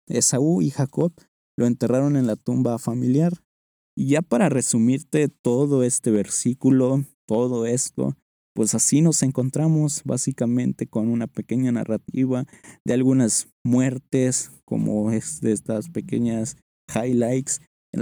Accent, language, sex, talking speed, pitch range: Mexican, Spanish, male, 125 wpm, 115-140 Hz